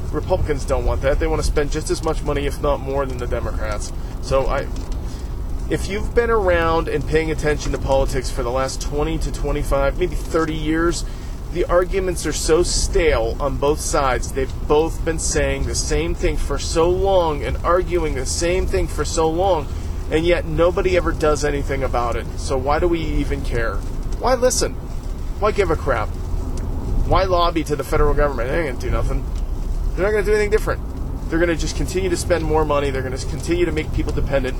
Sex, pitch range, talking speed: male, 120-165 Hz, 200 wpm